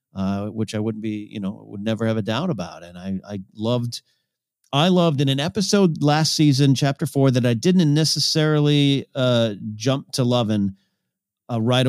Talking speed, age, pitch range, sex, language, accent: 180 wpm, 40-59, 110-145 Hz, male, English, American